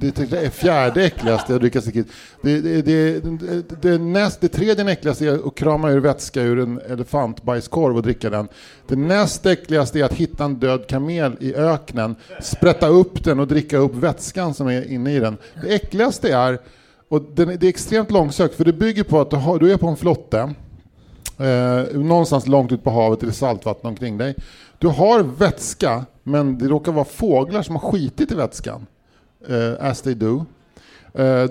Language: English